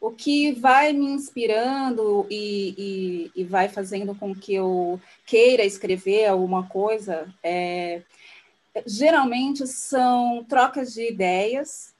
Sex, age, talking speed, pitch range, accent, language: female, 20-39, 115 wpm, 195-245 Hz, Brazilian, Portuguese